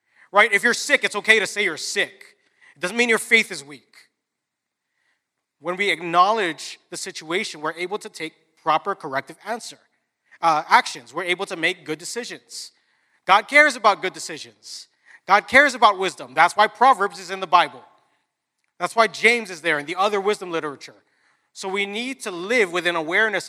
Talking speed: 180 wpm